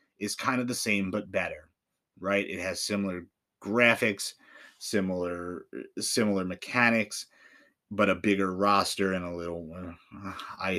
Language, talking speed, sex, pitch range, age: English, 135 wpm, male, 95-110 Hz, 30-49